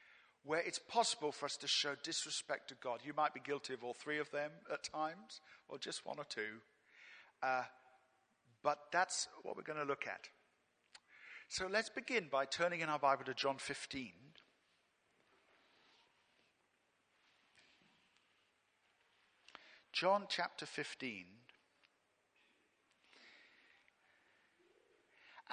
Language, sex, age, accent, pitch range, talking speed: English, male, 50-69, British, 135-195 Hz, 115 wpm